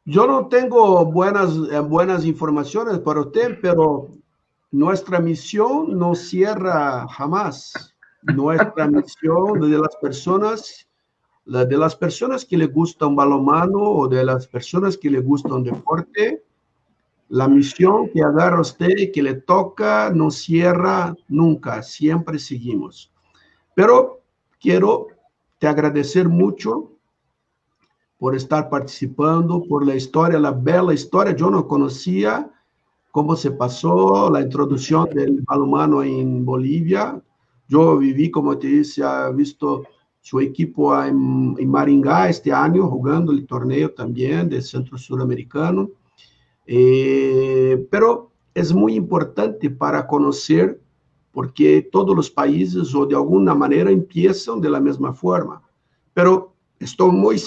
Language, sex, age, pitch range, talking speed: Portuguese, male, 60-79, 135-180 Hz, 130 wpm